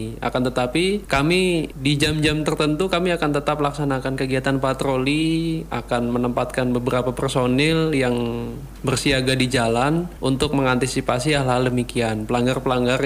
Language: Indonesian